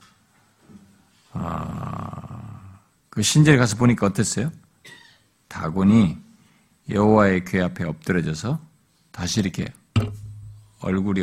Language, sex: Korean, male